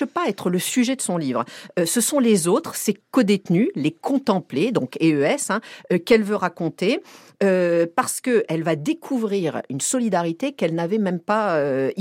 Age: 50-69